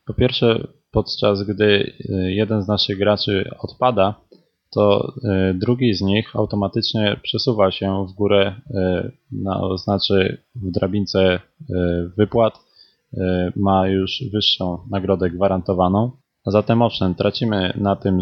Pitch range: 95-105 Hz